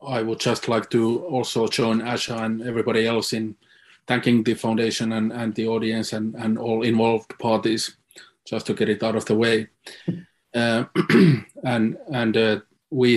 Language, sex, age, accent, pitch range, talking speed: English, male, 30-49, Finnish, 110-125 Hz, 170 wpm